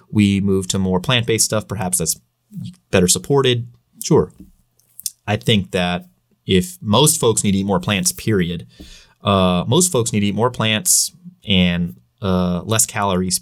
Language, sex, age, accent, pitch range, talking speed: English, male, 30-49, American, 95-115 Hz, 155 wpm